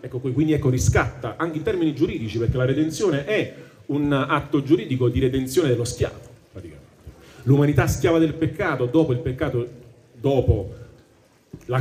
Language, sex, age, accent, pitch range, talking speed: Italian, male, 40-59, native, 115-150 Hz, 145 wpm